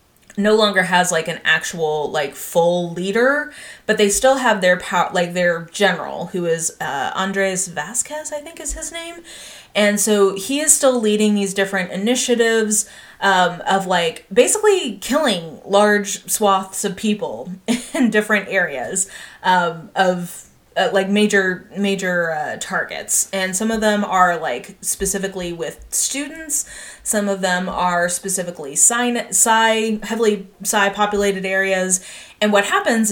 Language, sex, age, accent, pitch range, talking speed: English, female, 20-39, American, 180-220 Hz, 145 wpm